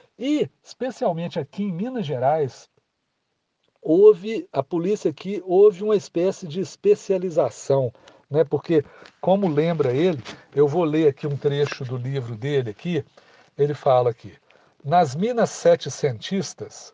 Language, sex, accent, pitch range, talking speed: Portuguese, male, Brazilian, 140-185 Hz, 130 wpm